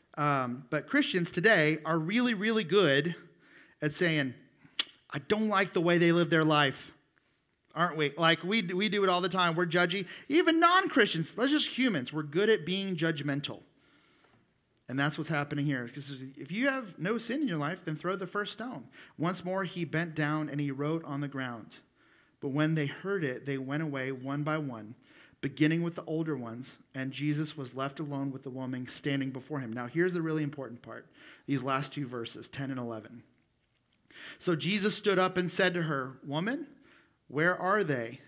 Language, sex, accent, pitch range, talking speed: English, male, American, 135-175 Hz, 195 wpm